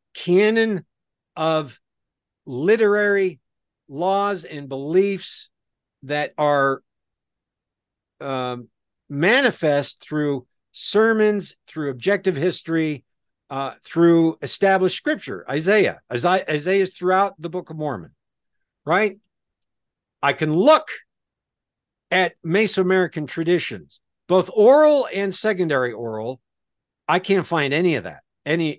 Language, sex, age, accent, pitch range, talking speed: English, male, 60-79, American, 140-190 Hz, 100 wpm